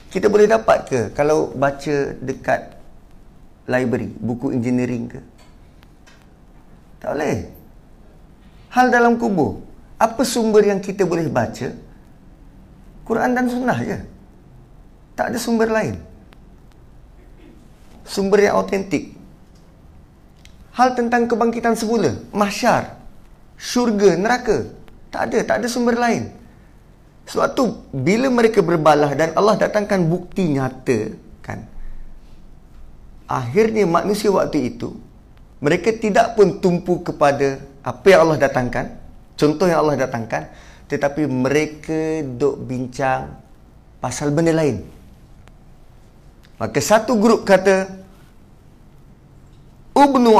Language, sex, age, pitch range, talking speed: Malay, male, 30-49, 125-215 Hz, 100 wpm